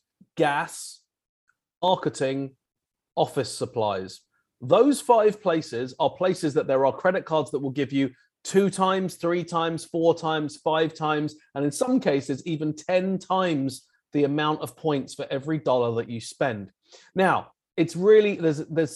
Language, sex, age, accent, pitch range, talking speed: English, male, 30-49, British, 135-175 Hz, 150 wpm